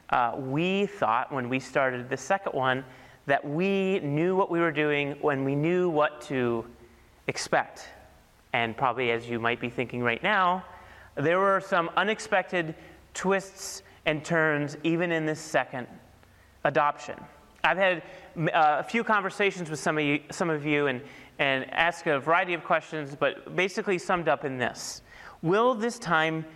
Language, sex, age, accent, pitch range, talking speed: English, male, 30-49, American, 140-180 Hz, 160 wpm